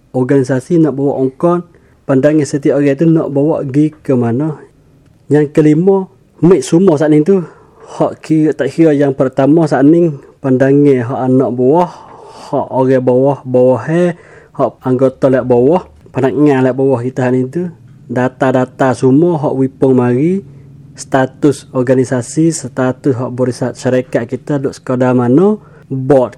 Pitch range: 130-155 Hz